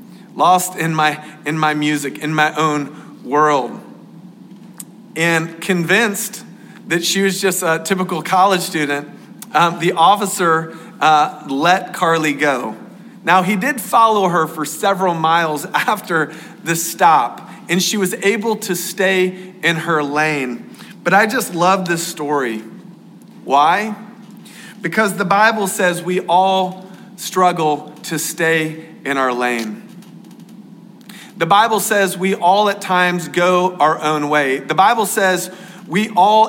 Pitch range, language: 165-200 Hz, English